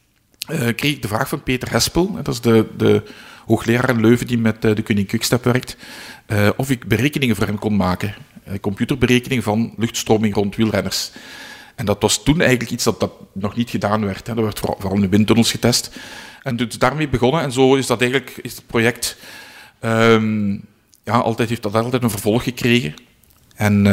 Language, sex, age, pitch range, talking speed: Dutch, male, 50-69, 105-125 Hz, 195 wpm